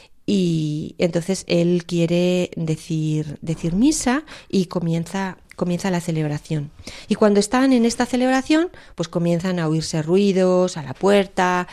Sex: female